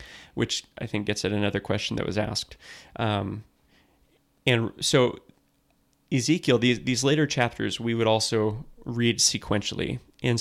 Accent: American